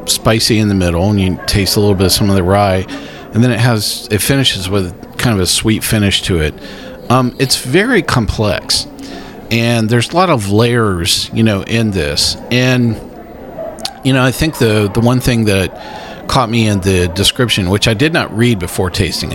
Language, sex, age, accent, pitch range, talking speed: English, male, 40-59, American, 95-115 Hz, 200 wpm